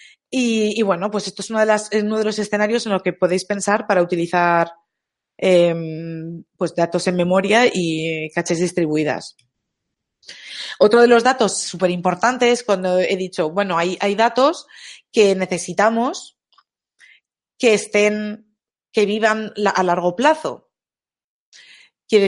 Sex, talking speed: female, 130 wpm